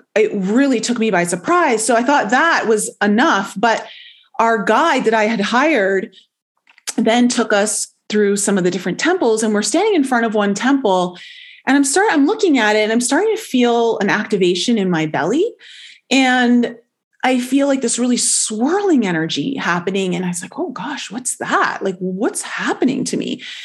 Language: English